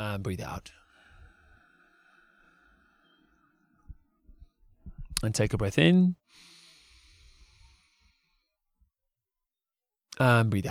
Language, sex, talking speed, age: English, male, 55 wpm, 30-49